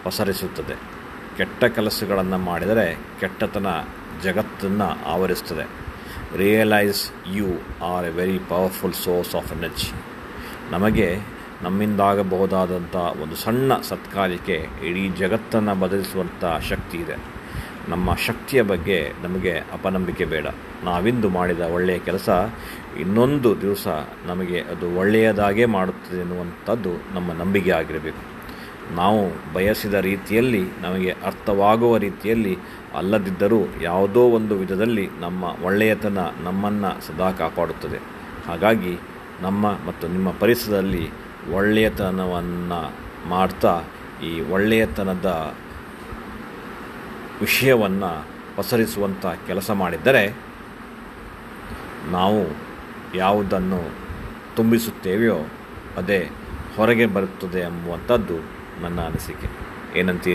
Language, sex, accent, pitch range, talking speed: English, male, Indian, 90-105 Hz, 75 wpm